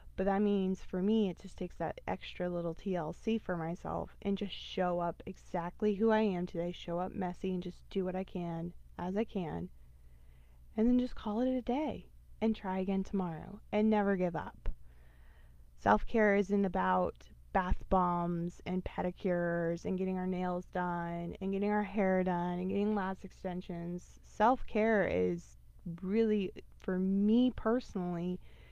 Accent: American